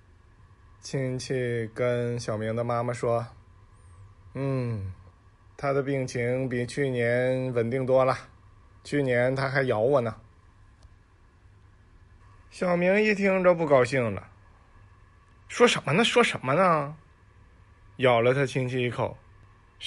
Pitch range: 100-135 Hz